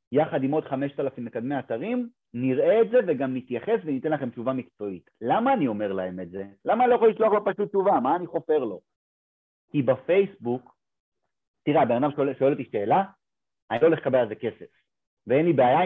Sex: male